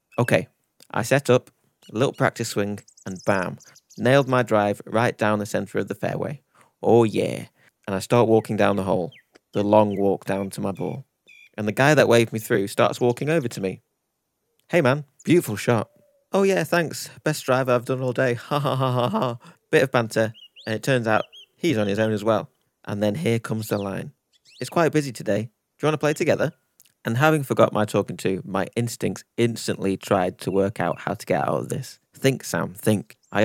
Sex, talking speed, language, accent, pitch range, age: male, 210 wpm, English, British, 105-130 Hz, 30-49